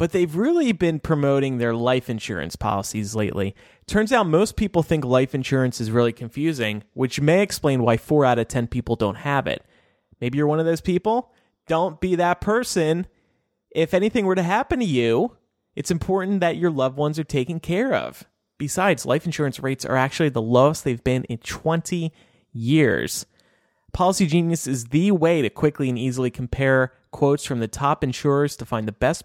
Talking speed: 185 wpm